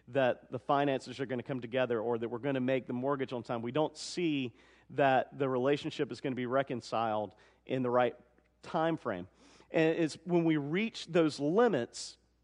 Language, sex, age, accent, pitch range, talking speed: English, male, 40-59, American, 130-170 Hz, 200 wpm